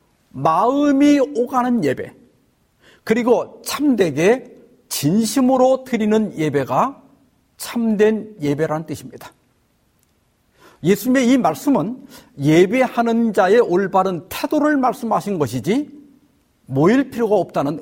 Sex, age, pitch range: male, 50-69, 170-235 Hz